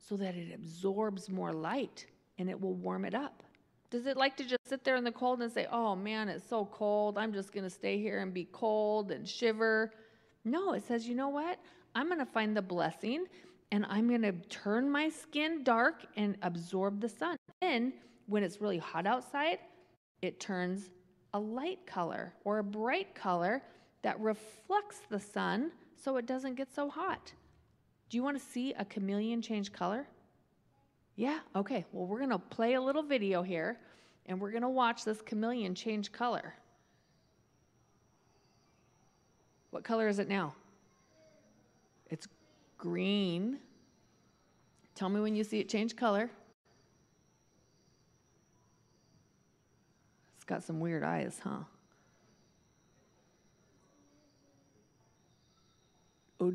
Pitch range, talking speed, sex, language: 195-250 Hz, 150 wpm, female, English